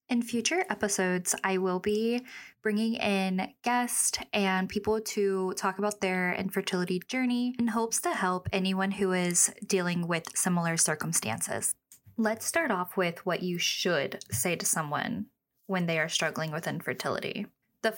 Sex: female